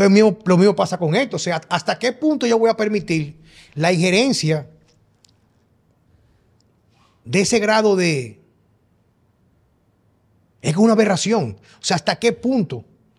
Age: 30-49